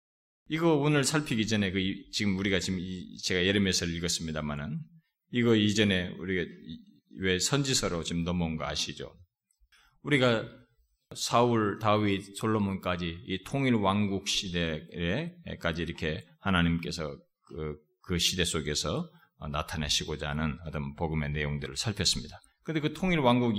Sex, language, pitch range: male, Korean, 85-140 Hz